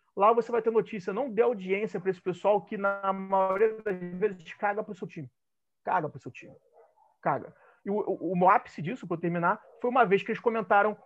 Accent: Brazilian